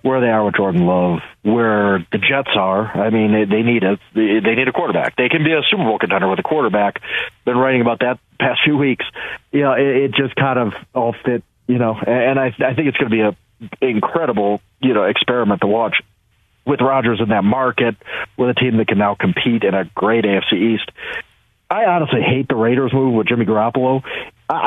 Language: English